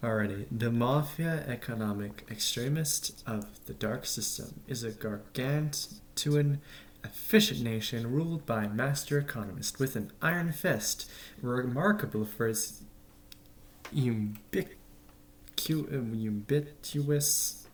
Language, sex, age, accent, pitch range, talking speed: English, male, 20-39, American, 110-145 Hz, 90 wpm